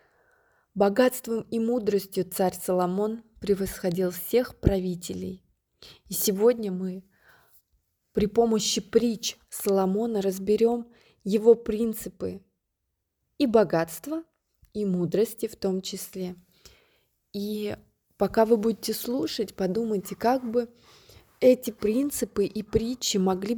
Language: Russian